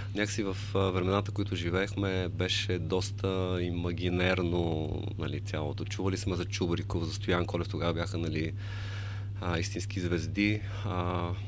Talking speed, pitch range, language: 130 wpm, 90-100 Hz, Bulgarian